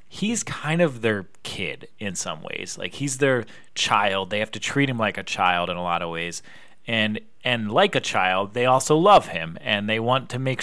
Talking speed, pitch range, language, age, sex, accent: 220 wpm, 105-145 Hz, English, 30-49, male, American